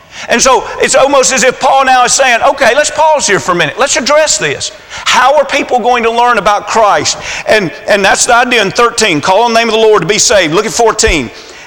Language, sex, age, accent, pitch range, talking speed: English, male, 40-59, American, 215-265 Hz, 245 wpm